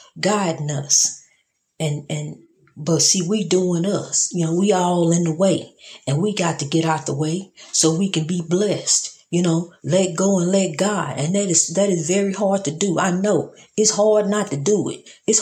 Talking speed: 210 wpm